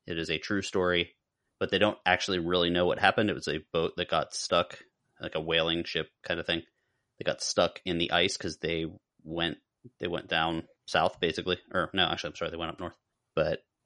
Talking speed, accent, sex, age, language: 220 wpm, American, male, 30-49, English